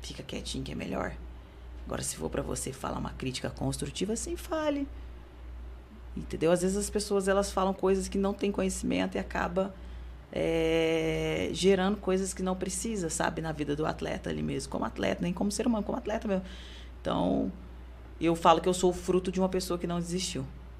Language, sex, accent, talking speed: Portuguese, female, Brazilian, 190 wpm